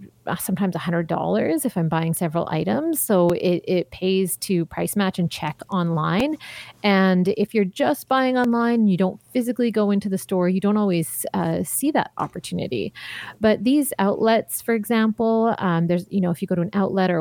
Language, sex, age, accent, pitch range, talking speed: English, female, 30-49, American, 170-205 Hz, 190 wpm